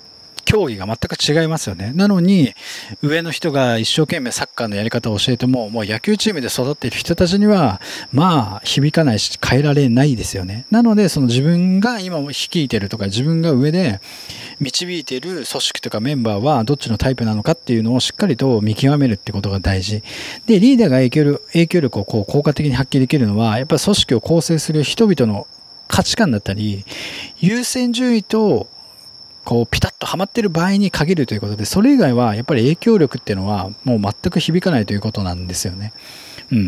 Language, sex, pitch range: Japanese, male, 115-180 Hz